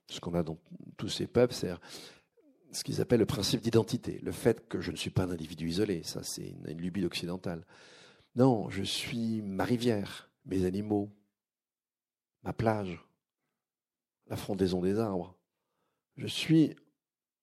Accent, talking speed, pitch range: French, 155 wpm, 95-120 Hz